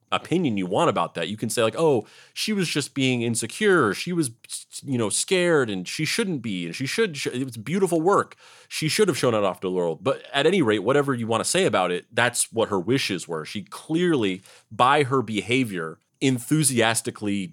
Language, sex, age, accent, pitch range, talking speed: English, male, 30-49, American, 110-140 Hz, 215 wpm